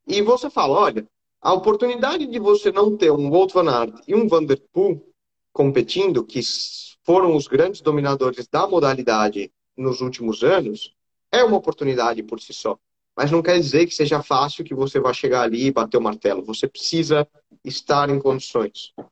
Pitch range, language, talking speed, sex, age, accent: 130-185 Hz, Portuguese, 180 wpm, male, 20-39, Brazilian